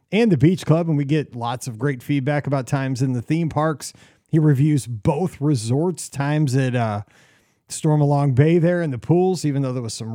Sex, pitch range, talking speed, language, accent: male, 140-185 Hz, 215 wpm, English, American